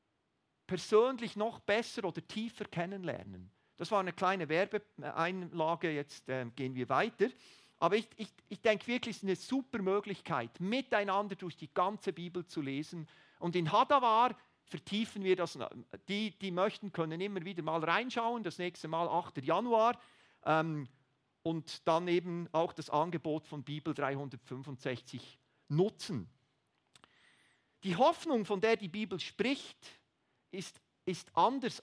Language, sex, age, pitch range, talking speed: German, male, 50-69, 155-205 Hz, 140 wpm